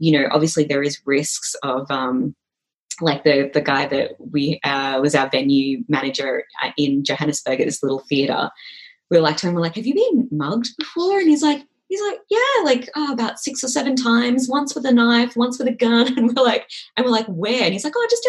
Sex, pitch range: female, 140-235 Hz